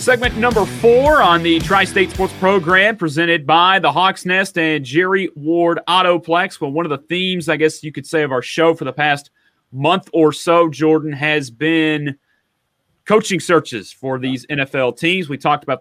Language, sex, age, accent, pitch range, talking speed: English, male, 30-49, American, 145-180 Hz, 180 wpm